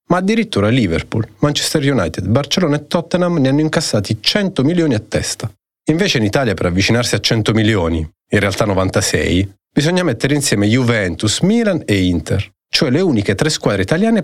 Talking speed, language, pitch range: 165 wpm, Italian, 95-135 Hz